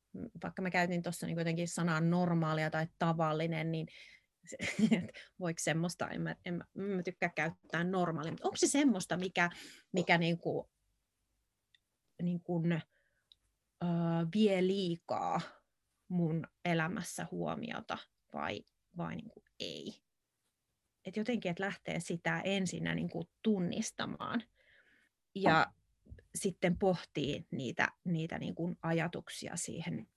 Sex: female